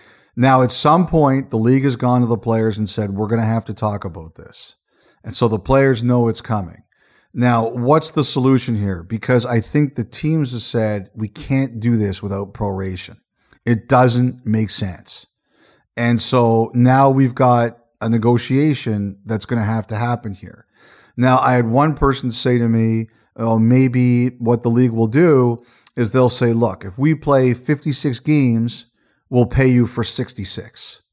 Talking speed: 180 wpm